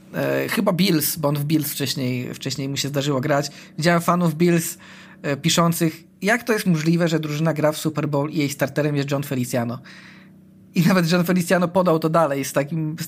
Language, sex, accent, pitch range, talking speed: Polish, male, native, 145-175 Hz, 190 wpm